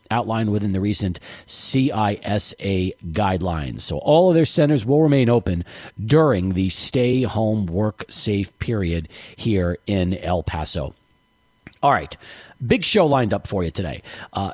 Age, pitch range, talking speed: 40-59, 105-170 Hz, 145 wpm